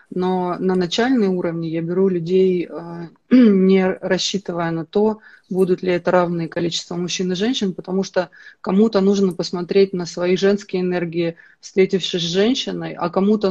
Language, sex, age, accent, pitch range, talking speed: Russian, female, 30-49, native, 180-200 Hz, 145 wpm